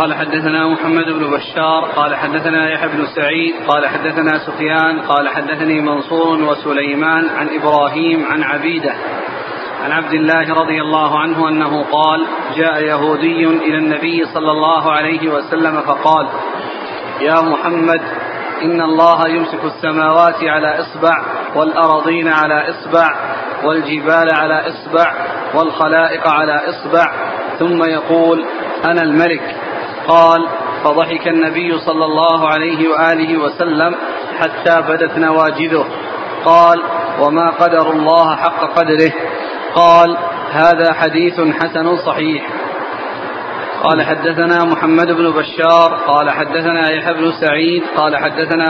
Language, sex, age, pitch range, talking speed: Arabic, male, 30-49, 155-165 Hz, 115 wpm